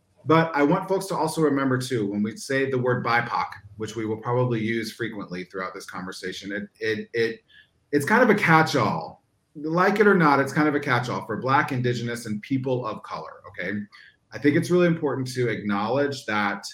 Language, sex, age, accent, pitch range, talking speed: English, male, 30-49, American, 115-160 Hz, 200 wpm